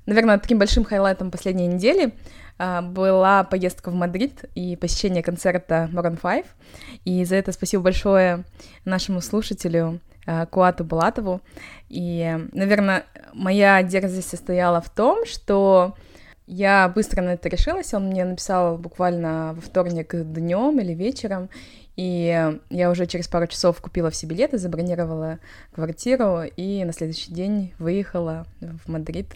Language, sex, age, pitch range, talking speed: Russian, female, 20-39, 165-195 Hz, 130 wpm